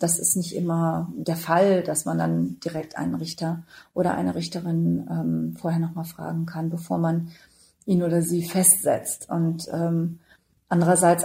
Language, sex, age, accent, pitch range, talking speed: German, female, 40-59, German, 165-185 Hz, 155 wpm